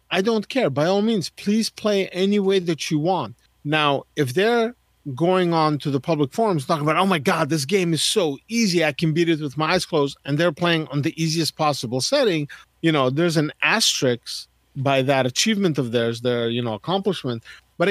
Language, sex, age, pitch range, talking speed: English, male, 40-59, 140-195 Hz, 210 wpm